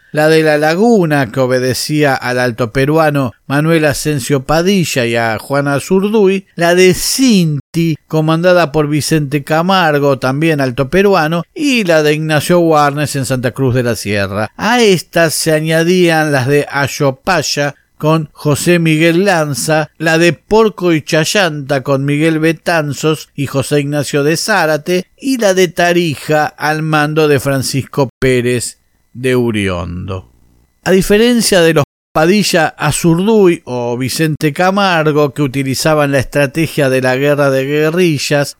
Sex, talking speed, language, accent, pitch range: male, 140 wpm, Spanish, Argentinian, 140-180 Hz